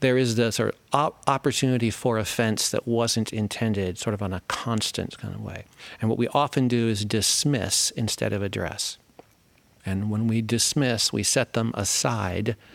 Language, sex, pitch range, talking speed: English, male, 95-115 Hz, 175 wpm